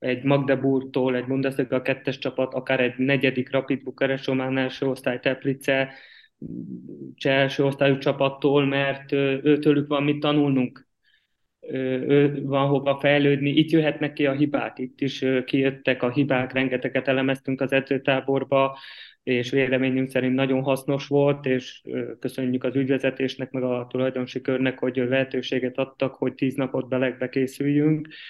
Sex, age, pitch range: male, 20-39, 130-145 Hz